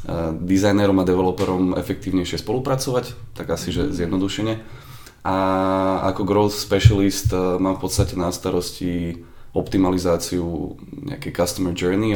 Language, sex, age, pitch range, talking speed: Slovak, male, 20-39, 90-105 Hz, 110 wpm